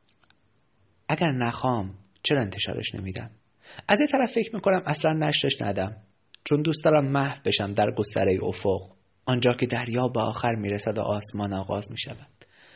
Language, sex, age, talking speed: Persian, male, 30-49, 145 wpm